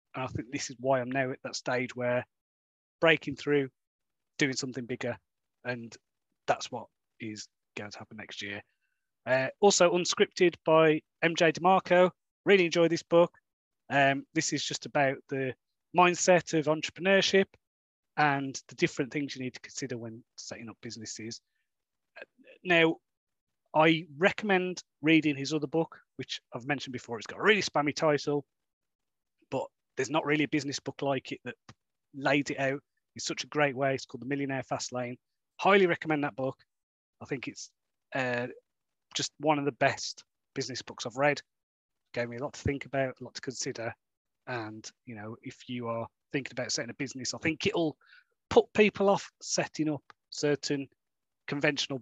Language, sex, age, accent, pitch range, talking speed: English, male, 30-49, British, 125-160 Hz, 170 wpm